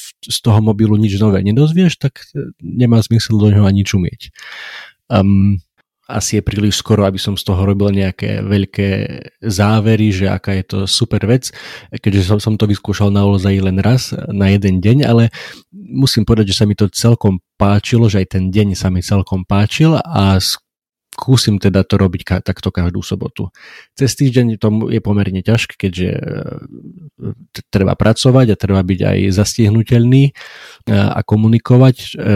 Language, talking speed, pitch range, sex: Slovak, 160 wpm, 95-115 Hz, male